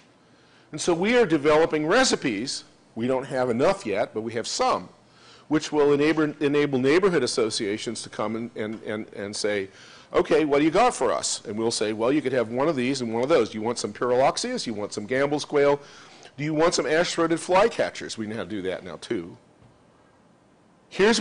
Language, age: English, 50-69